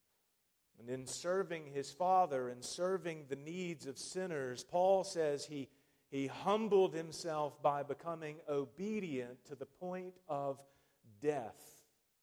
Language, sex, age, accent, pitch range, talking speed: English, male, 40-59, American, 145-210 Hz, 125 wpm